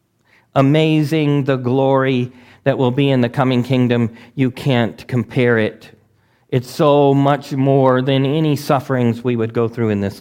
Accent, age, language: American, 40-59, English